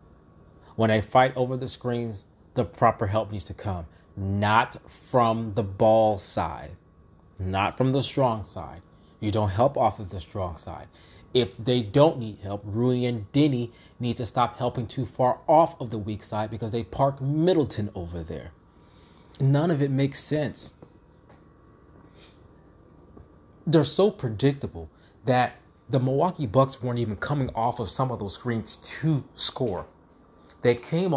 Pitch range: 95-130 Hz